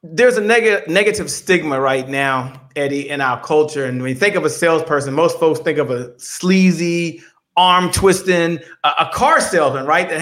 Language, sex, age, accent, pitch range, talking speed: English, male, 40-59, American, 160-230 Hz, 190 wpm